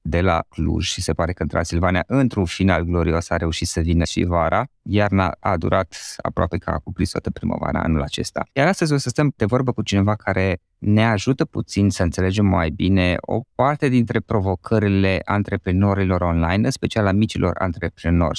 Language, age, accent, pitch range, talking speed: Romanian, 20-39, native, 90-120 Hz, 185 wpm